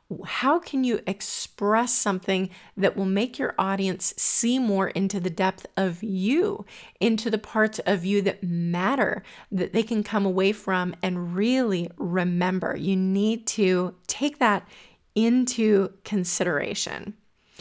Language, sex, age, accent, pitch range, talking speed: English, female, 30-49, American, 190-225 Hz, 135 wpm